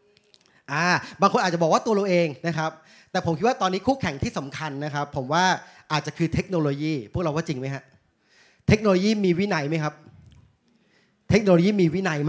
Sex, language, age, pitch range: male, Thai, 30-49, 145-180 Hz